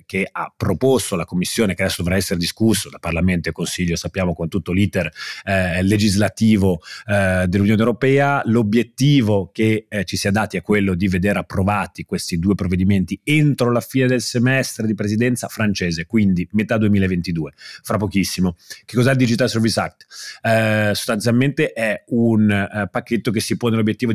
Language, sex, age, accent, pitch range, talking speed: Italian, male, 30-49, native, 95-110 Hz, 165 wpm